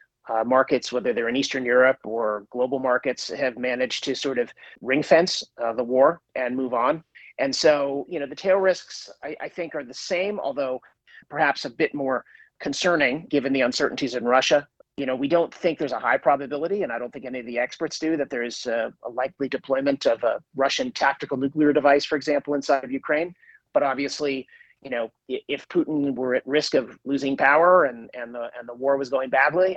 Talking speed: 210 wpm